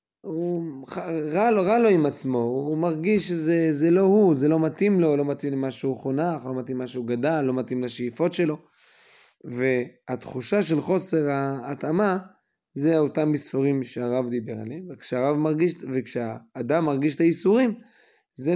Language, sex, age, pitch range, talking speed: Hebrew, male, 20-39, 125-160 Hz, 135 wpm